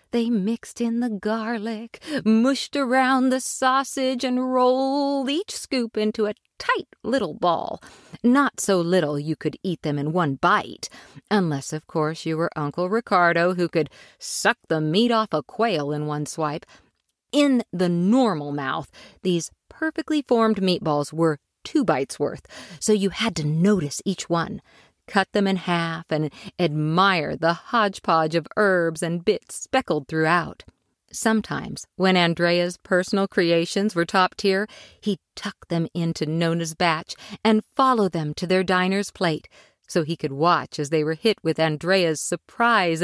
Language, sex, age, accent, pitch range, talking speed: English, female, 40-59, American, 165-220 Hz, 155 wpm